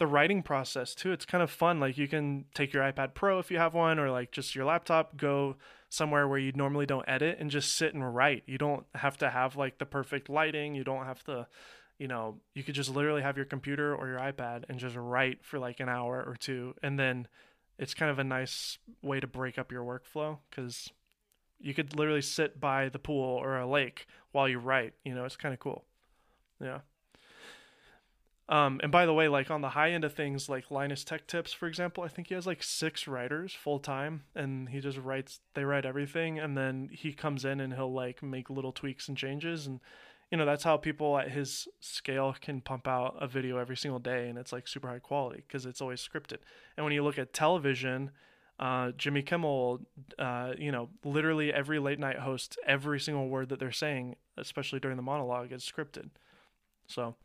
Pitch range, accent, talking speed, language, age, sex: 130-150 Hz, American, 220 wpm, English, 20-39, male